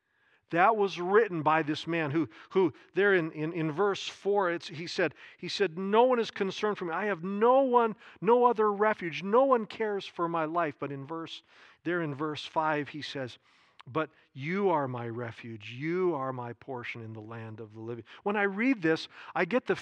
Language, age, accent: English, 50-69, American